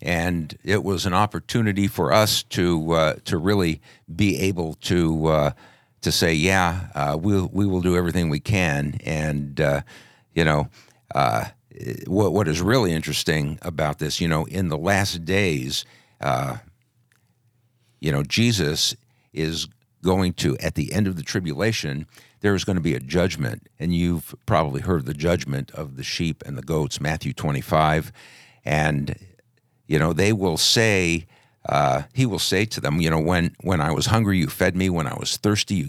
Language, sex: English, male